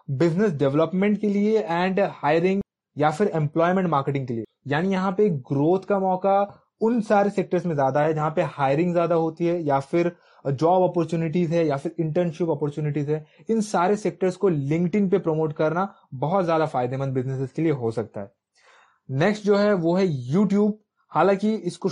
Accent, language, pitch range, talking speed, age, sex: native, Hindi, 150-190 Hz, 180 wpm, 20-39, male